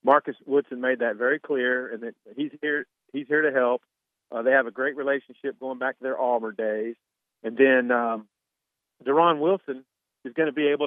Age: 40-59